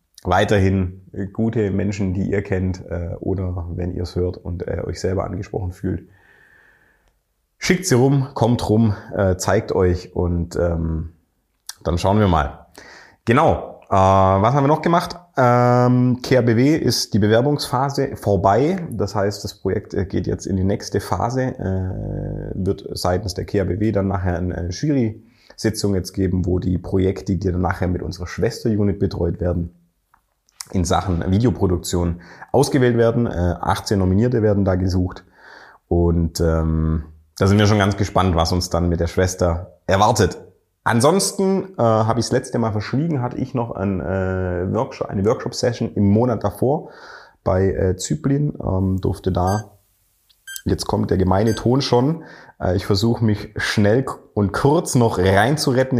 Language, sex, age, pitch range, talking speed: German, male, 30-49, 90-115 Hz, 155 wpm